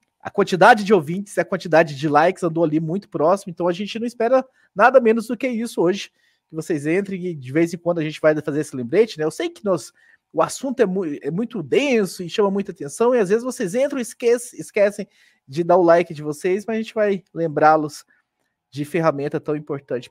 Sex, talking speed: male, 225 wpm